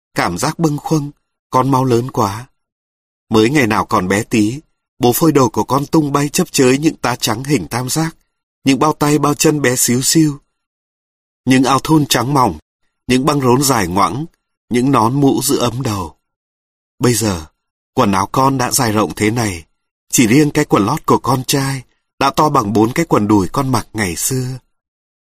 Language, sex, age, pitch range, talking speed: Vietnamese, male, 30-49, 105-140 Hz, 195 wpm